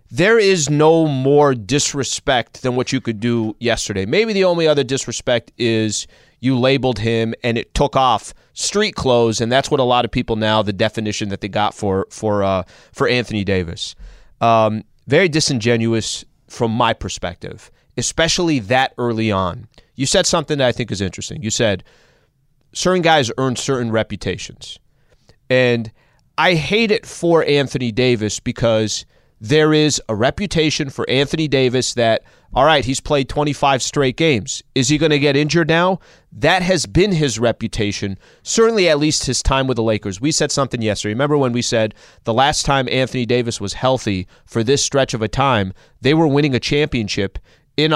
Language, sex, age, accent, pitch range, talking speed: English, male, 30-49, American, 110-145 Hz, 175 wpm